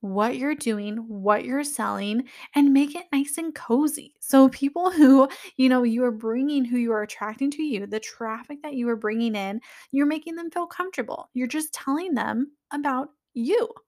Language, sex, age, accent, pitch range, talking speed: English, female, 10-29, American, 220-295 Hz, 190 wpm